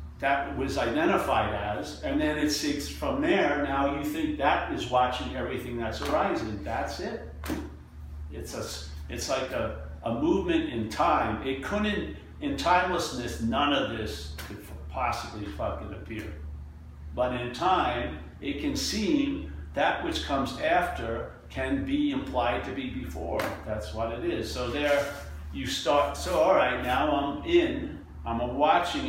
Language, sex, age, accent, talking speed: English, male, 50-69, American, 150 wpm